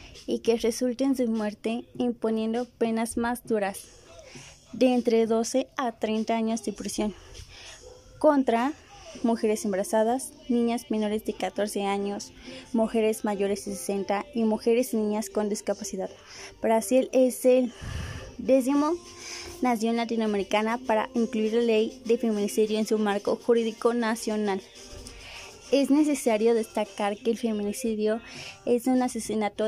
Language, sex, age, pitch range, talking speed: Spanish, female, 20-39, 210-245 Hz, 125 wpm